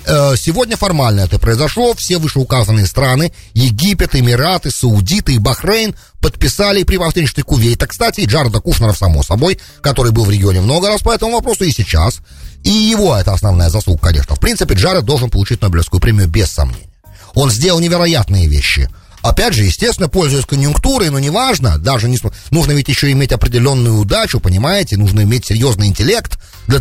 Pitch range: 95-150 Hz